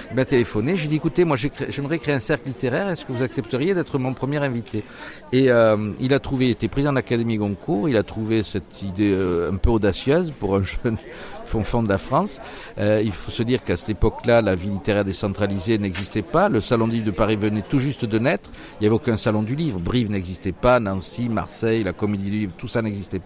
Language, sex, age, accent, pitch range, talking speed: French, male, 60-79, French, 105-135 Hz, 235 wpm